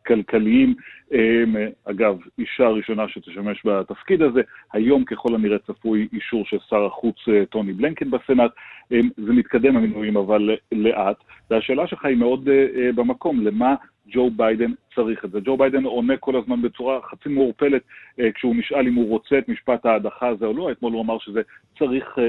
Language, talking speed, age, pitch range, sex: Hebrew, 155 wpm, 40-59, 105-125 Hz, male